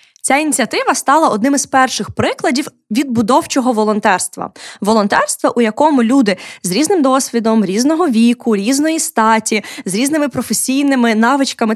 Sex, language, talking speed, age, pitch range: female, Ukrainian, 120 wpm, 20-39, 215-275 Hz